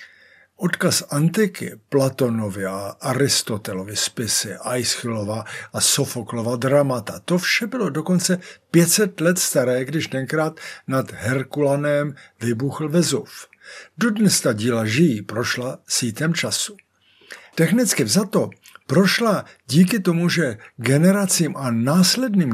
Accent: native